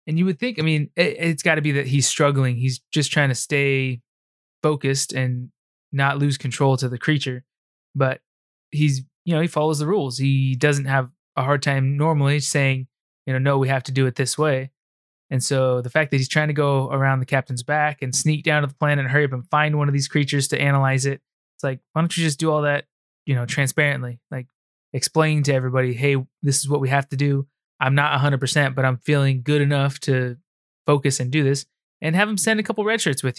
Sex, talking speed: male, 235 wpm